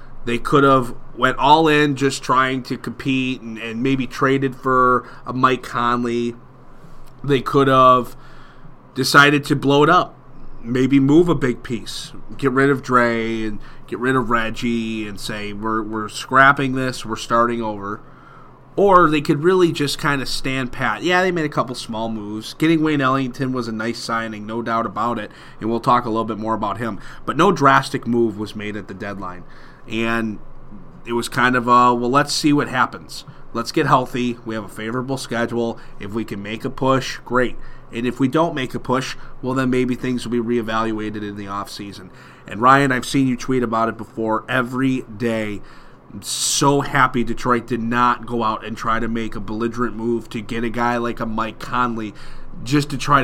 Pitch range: 115-135 Hz